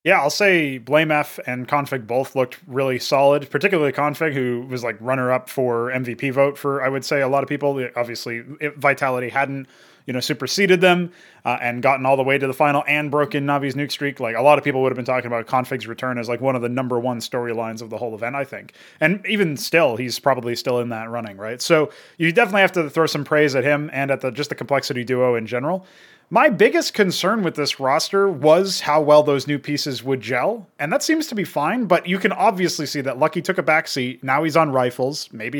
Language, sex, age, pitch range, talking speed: English, male, 20-39, 125-165 Hz, 235 wpm